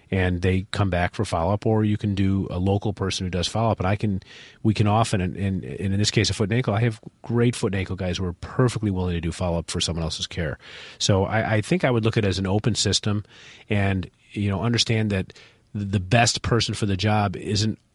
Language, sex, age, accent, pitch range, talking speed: English, male, 40-59, American, 95-115 Hz, 255 wpm